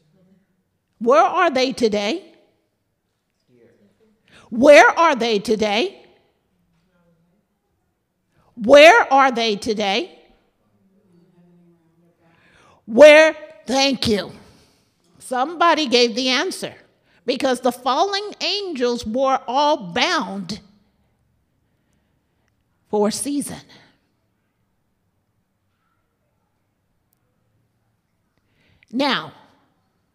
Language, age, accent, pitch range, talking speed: English, 50-69, American, 195-295 Hz, 60 wpm